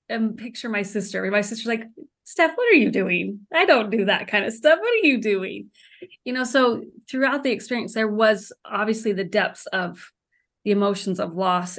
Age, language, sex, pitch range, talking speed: 30-49, English, female, 195-235 Hz, 195 wpm